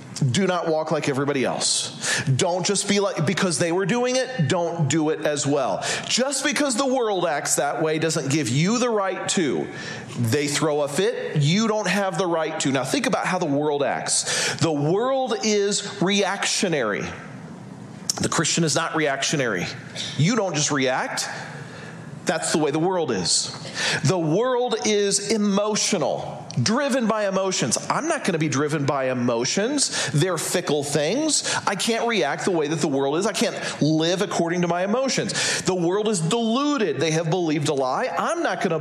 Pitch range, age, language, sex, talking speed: 155-210 Hz, 40-59, English, male, 180 wpm